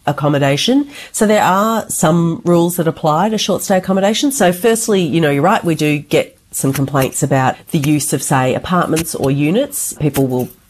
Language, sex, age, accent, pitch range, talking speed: English, female, 40-59, Australian, 135-170 Hz, 180 wpm